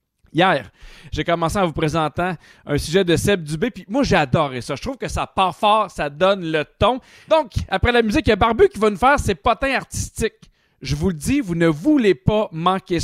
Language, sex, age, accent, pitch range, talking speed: French, male, 30-49, Canadian, 160-205 Hz, 230 wpm